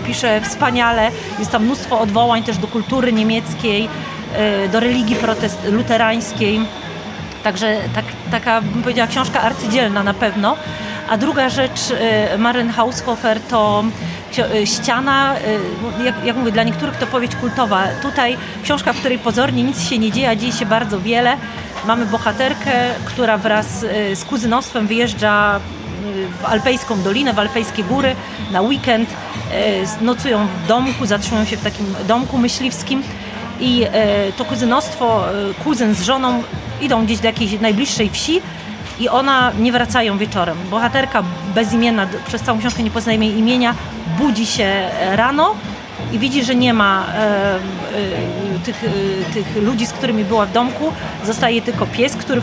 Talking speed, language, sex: 135 wpm, Polish, female